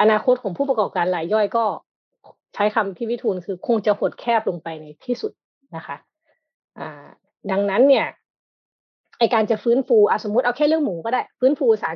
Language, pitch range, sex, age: Thai, 195-255 Hz, female, 20-39